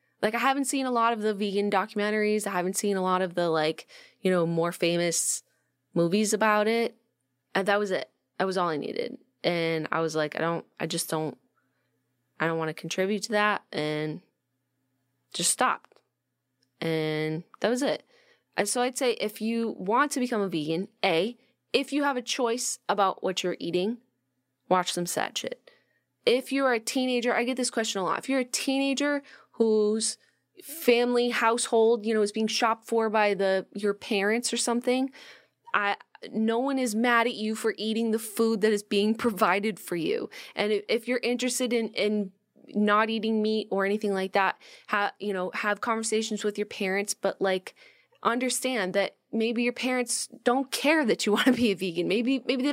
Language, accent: English, American